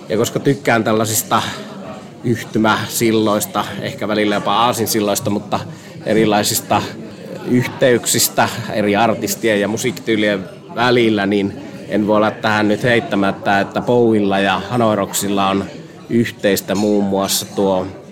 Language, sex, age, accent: Finnish, male, 30-49, native